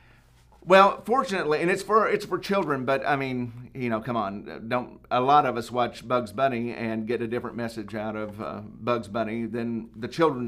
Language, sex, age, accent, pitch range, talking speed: English, male, 50-69, American, 115-165 Hz, 205 wpm